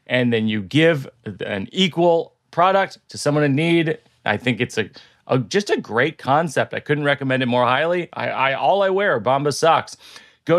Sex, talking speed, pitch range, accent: male, 200 wpm, 115-165 Hz, American